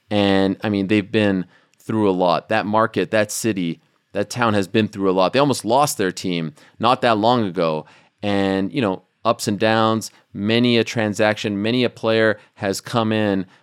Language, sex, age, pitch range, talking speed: English, male, 30-49, 100-135 Hz, 190 wpm